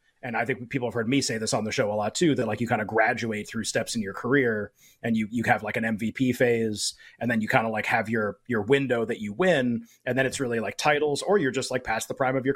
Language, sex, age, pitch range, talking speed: English, male, 30-49, 115-145 Hz, 295 wpm